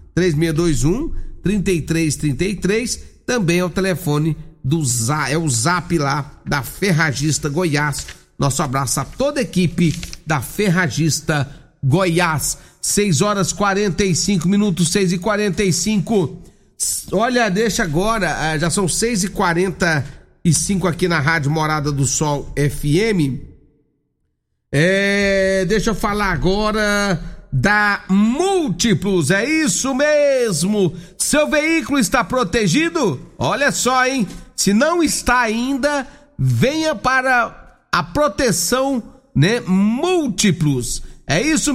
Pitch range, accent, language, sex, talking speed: 165-235 Hz, Brazilian, Portuguese, male, 105 wpm